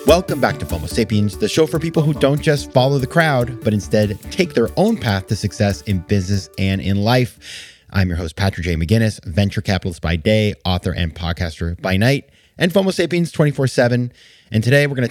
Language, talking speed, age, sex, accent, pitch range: English, 205 wpm, 30-49, male, American, 90-120 Hz